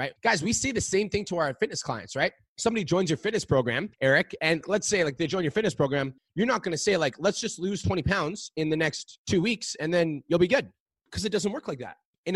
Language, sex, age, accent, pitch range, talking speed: English, male, 20-39, American, 145-185 Hz, 265 wpm